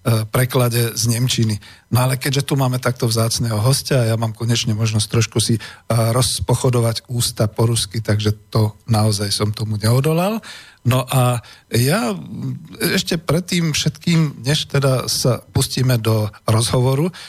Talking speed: 135 wpm